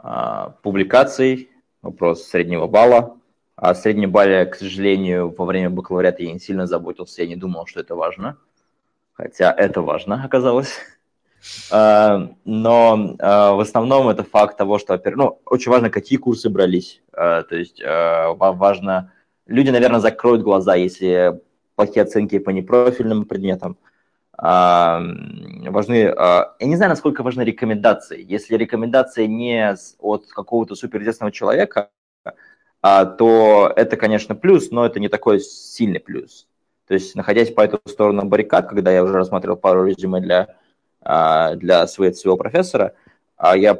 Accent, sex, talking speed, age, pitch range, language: native, male, 140 wpm, 20-39, 95-115 Hz, Russian